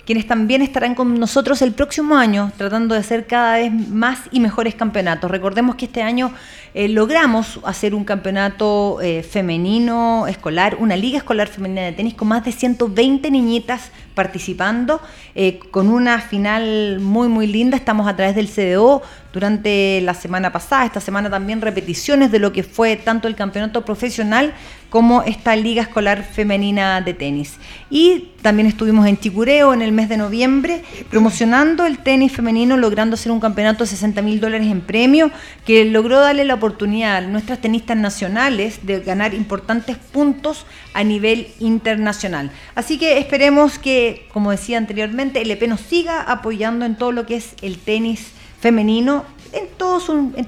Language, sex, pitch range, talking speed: Spanish, female, 205-250 Hz, 165 wpm